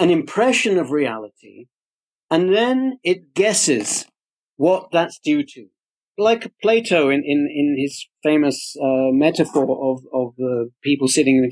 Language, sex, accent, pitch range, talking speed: English, male, British, 145-215 Hz, 145 wpm